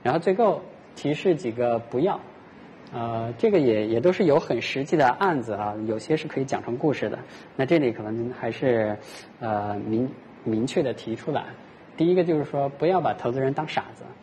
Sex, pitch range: male, 110-145 Hz